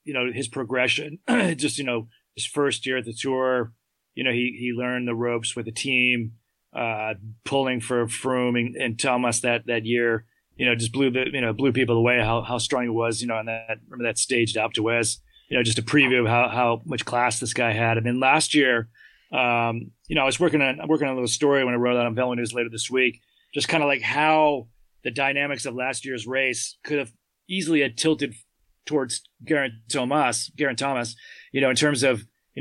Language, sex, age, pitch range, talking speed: English, male, 30-49, 120-140 Hz, 235 wpm